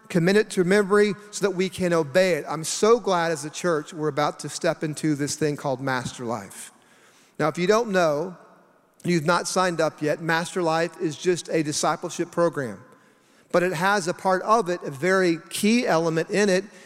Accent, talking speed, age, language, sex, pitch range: American, 200 wpm, 40-59, English, male, 160-195 Hz